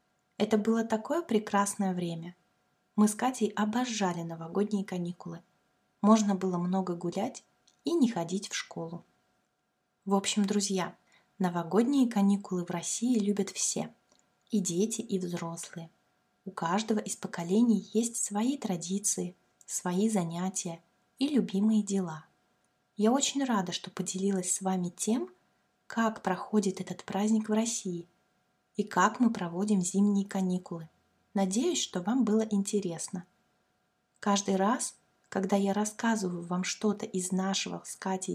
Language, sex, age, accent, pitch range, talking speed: Russian, female, 20-39, native, 180-220 Hz, 125 wpm